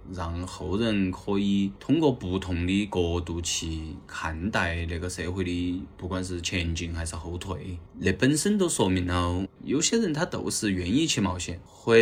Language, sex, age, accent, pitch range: Chinese, male, 20-39, native, 85-100 Hz